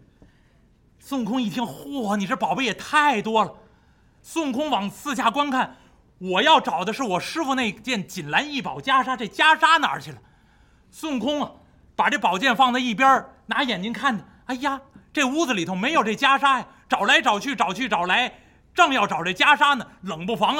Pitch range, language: 230-305 Hz, Chinese